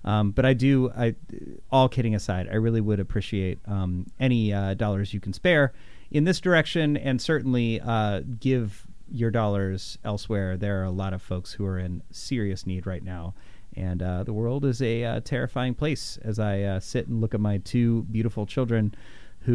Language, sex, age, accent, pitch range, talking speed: English, male, 30-49, American, 100-125 Hz, 190 wpm